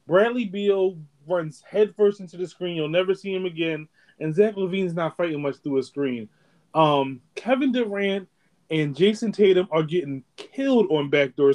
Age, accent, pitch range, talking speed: 20-39, American, 140-195 Hz, 165 wpm